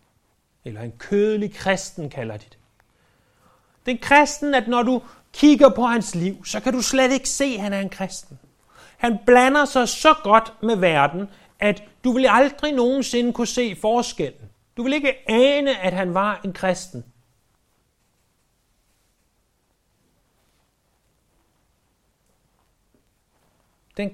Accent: native